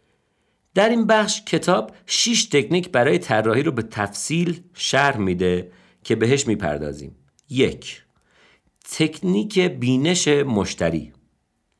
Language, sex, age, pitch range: Persian, male, 50-69, 105-180 Hz